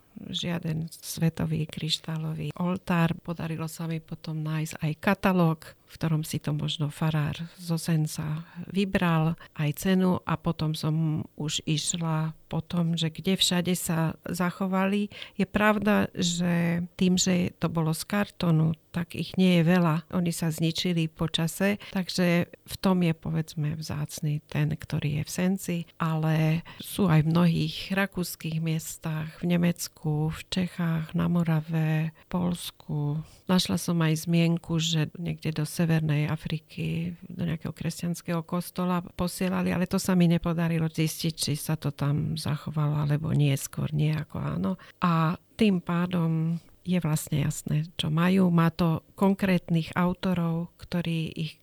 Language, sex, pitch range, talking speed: Slovak, female, 155-180 Hz, 145 wpm